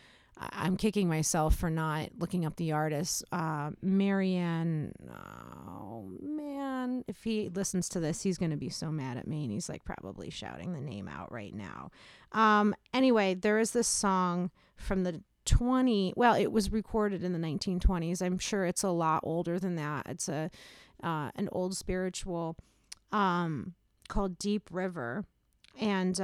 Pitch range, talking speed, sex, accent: 170-205 Hz, 165 wpm, female, American